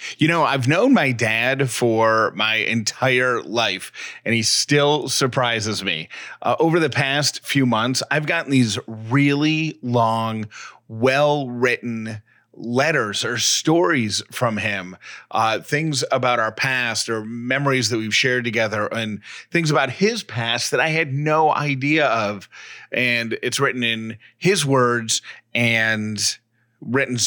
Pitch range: 110-140 Hz